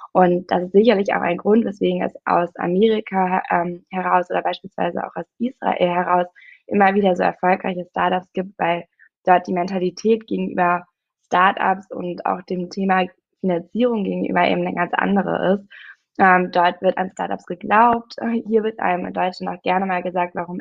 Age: 20-39